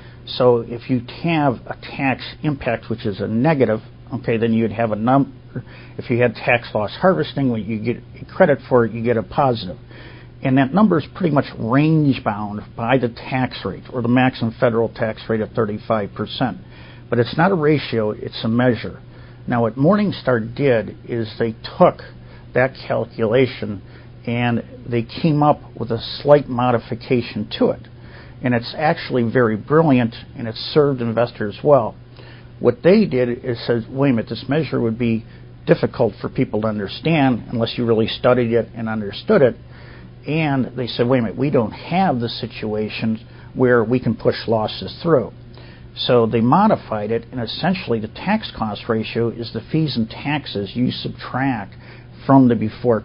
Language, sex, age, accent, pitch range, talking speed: English, male, 50-69, American, 115-130 Hz, 170 wpm